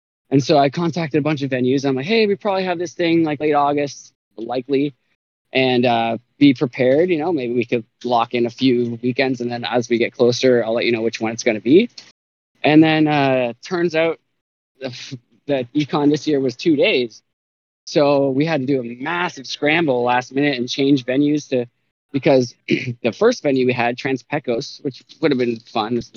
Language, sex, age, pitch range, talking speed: English, male, 20-39, 120-140 Hz, 205 wpm